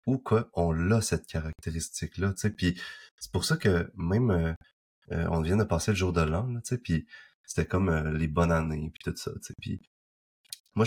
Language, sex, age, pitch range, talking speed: French, male, 20-39, 85-110 Hz, 230 wpm